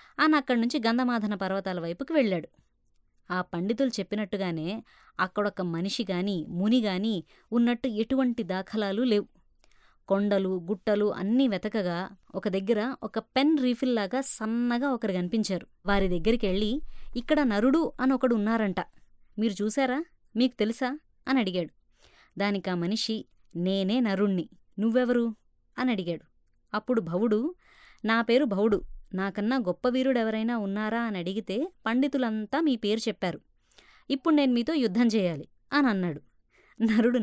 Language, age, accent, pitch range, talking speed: Telugu, 20-39, native, 195-260 Hz, 115 wpm